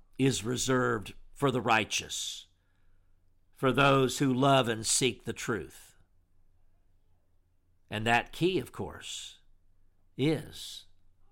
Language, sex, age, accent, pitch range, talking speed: English, male, 50-69, American, 95-140 Hz, 100 wpm